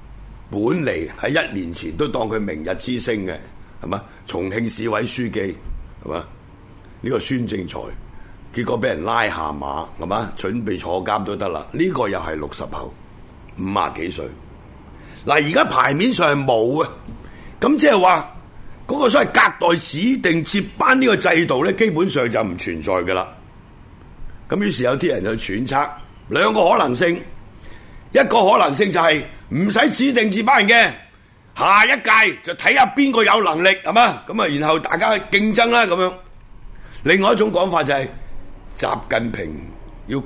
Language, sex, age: Chinese, male, 60-79